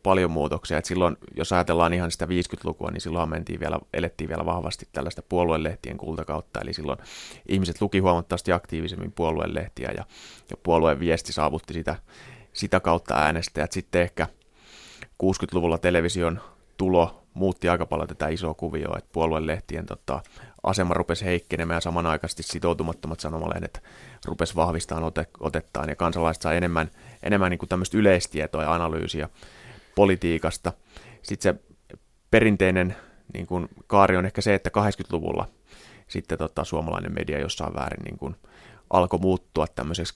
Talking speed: 135 wpm